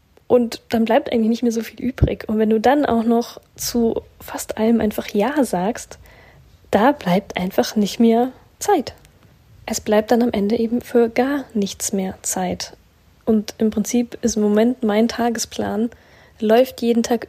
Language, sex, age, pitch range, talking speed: German, female, 10-29, 210-235 Hz, 170 wpm